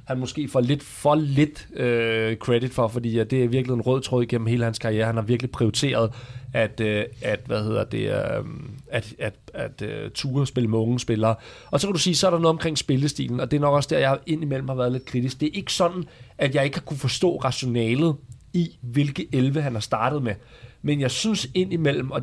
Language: Danish